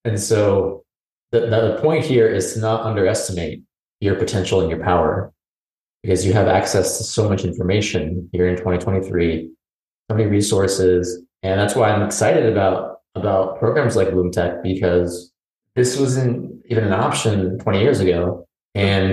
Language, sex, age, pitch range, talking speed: English, male, 30-49, 90-110 Hz, 155 wpm